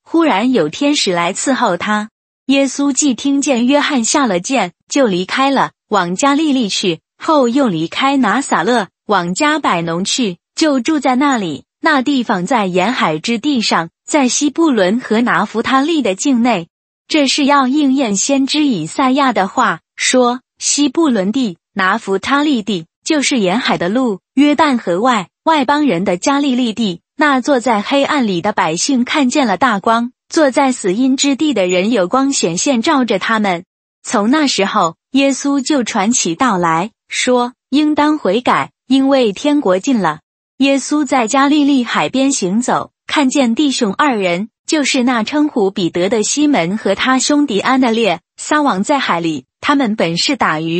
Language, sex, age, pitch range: Chinese, female, 20-39, 200-280 Hz